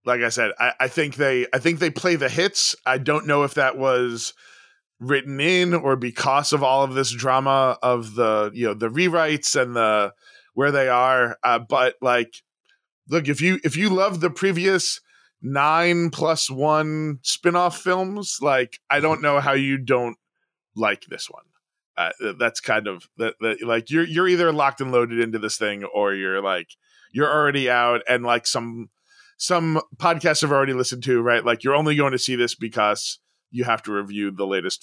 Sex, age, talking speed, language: male, 20-39, 190 wpm, English